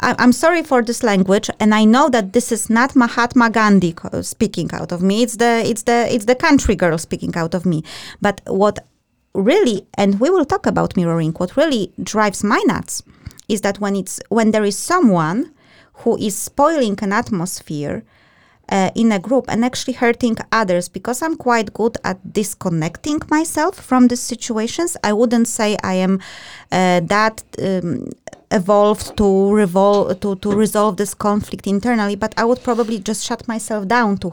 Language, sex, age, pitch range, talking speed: English, female, 20-39, 190-235 Hz, 175 wpm